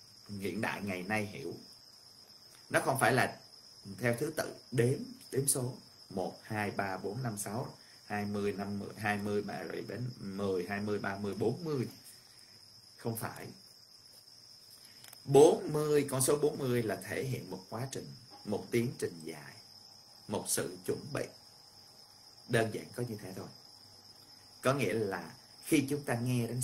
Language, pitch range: Vietnamese, 105-125 Hz